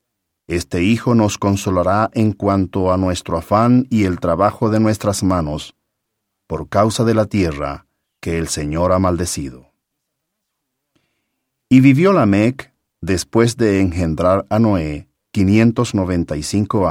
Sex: male